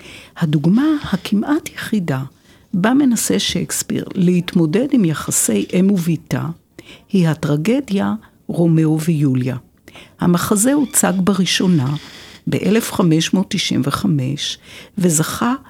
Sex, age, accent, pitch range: female, 60-79, native, 155-215 Hz